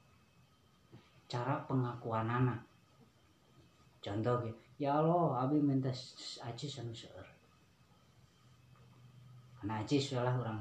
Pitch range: 115-150 Hz